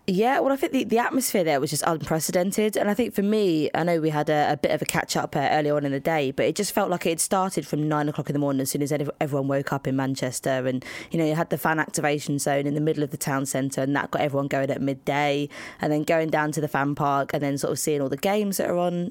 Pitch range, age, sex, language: 140-170 Hz, 20-39, female, English